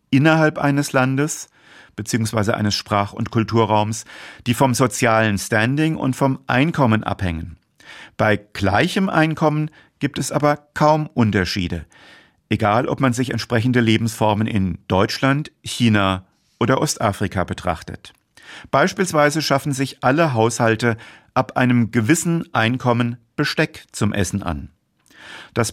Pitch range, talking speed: 105-135 Hz, 115 wpm